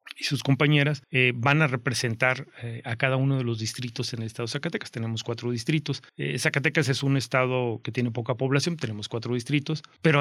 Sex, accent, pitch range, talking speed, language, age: male, Mexican, 120-140 Hz, 205 wpm, Spanish, 30-49